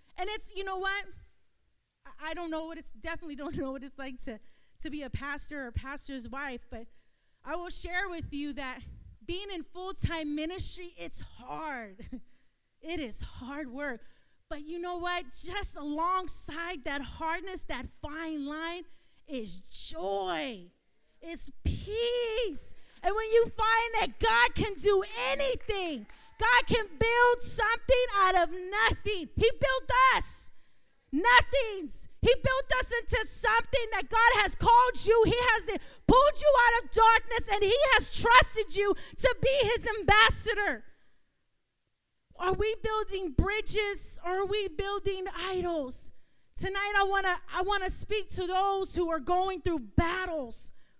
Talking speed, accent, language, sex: 145 wpm, American, English, female